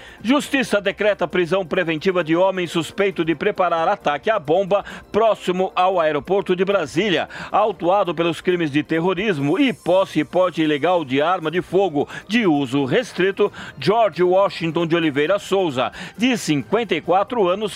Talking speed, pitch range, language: 140 wpm, 165-205 Hz, Portuguese